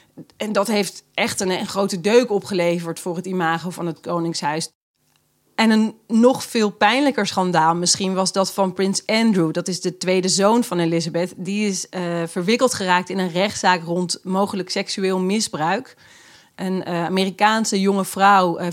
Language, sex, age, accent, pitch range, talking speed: Dutch, female, 30-49, Dutch, 180-215 Hz, 165 wpm